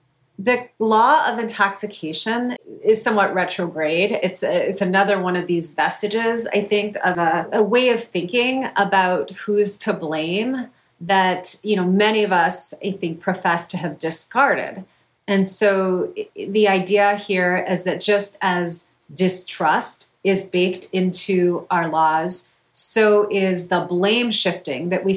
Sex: female